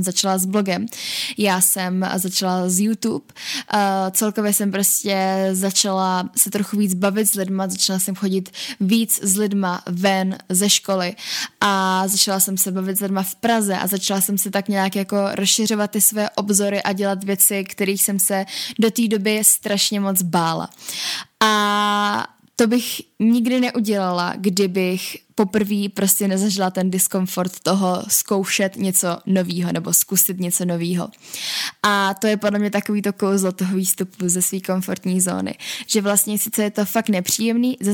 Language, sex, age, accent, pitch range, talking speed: Czech, female, 10-29, native, 190-210 Hz, 160 wpm